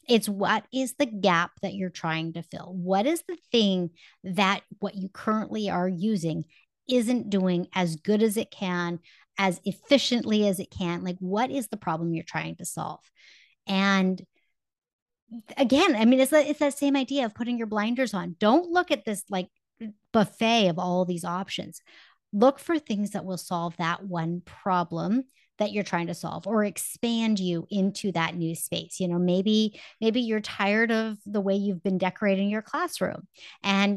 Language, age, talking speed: English, 30-49, 180 wpm